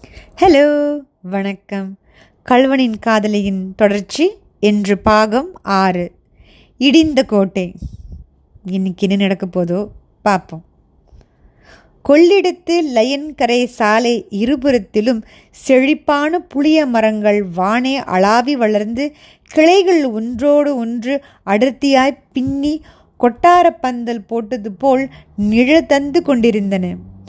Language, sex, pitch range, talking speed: Tamil, female, 210-285 Hz, 75 wpm